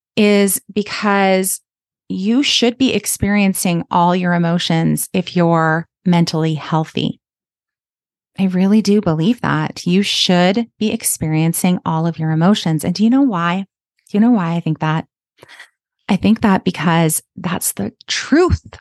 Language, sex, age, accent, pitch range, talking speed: English, female, 30-49, American, 165-205 Hz, 145 wpm